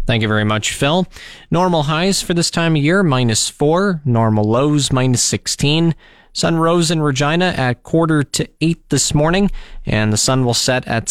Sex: male